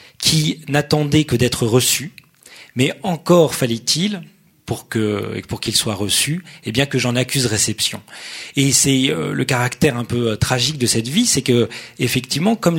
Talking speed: 175 wpm